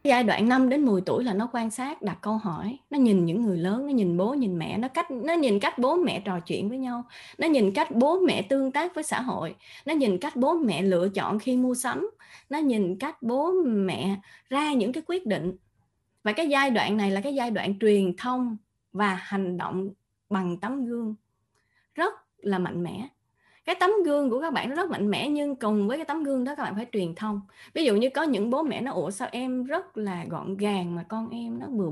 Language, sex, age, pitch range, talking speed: Vietnamese, female, 20-39, 190-275 Hz, 240 wpm